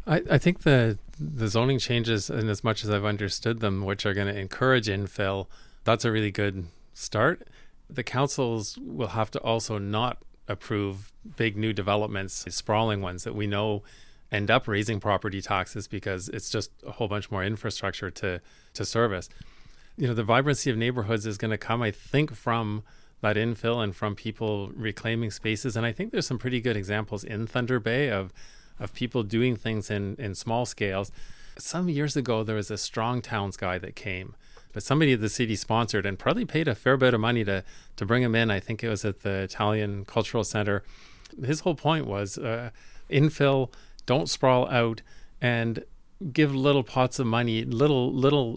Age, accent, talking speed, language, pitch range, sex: 30-49, American, 190 wpm, English, 105-125 Hz, male